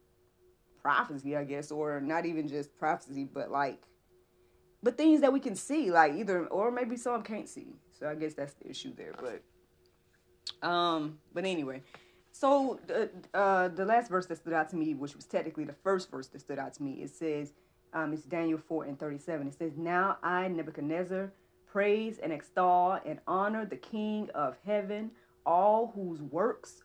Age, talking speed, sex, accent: 30-49, 180 wpm, female, American